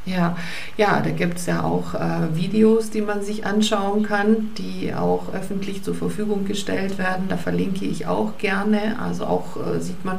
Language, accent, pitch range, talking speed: German, German, 160-195 Hz, 185 wpm